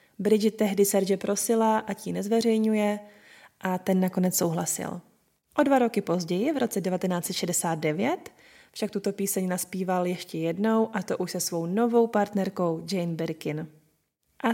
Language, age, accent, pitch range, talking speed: Czech, 20-39, native, 190-220 Hz, 140 wpm